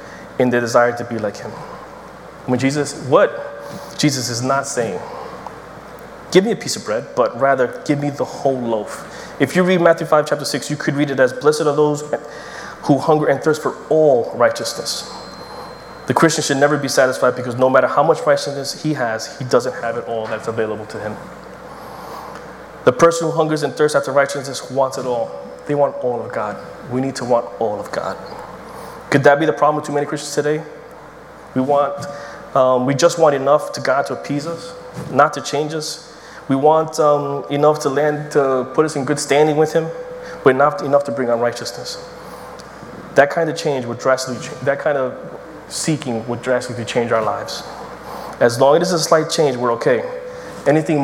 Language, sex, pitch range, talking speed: English, male, 130-155 Hz, 195 wpm